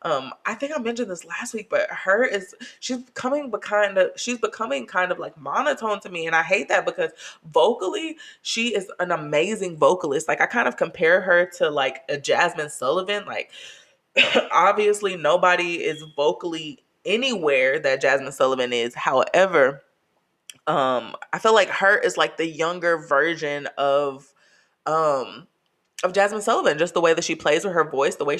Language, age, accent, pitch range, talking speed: English, 20-39, American, 145-235 Hz, 175 wpm